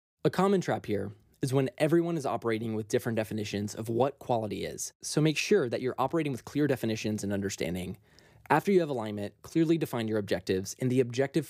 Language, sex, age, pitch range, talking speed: English, male, 20-39, 105-145 Hz, 200 wpm